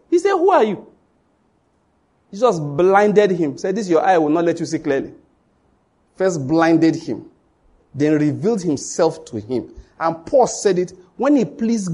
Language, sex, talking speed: English, male, 175 wpm